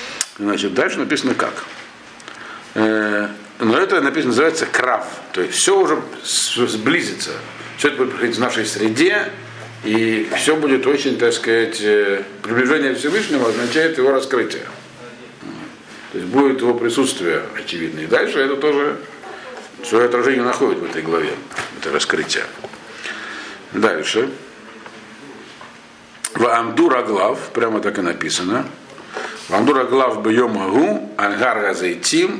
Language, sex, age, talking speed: Russian, male, 50-69, 115 wpm